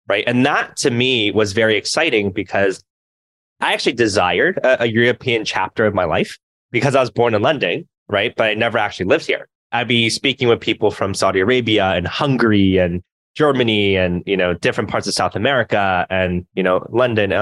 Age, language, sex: 20-39, English, male